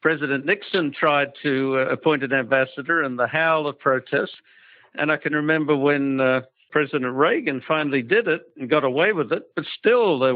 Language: English